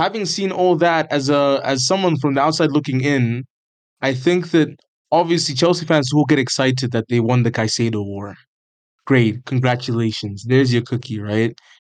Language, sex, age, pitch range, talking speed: English, male, 20-39, 125-150 Hz, 170 wpm